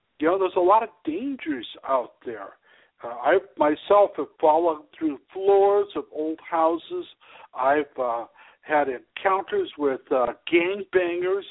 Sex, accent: male, American